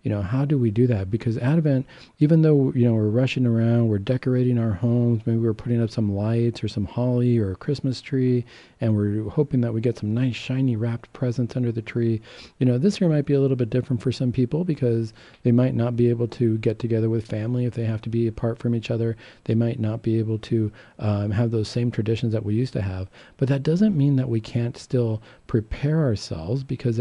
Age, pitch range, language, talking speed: 40-59, 110-130 Hz, English, 240 wpm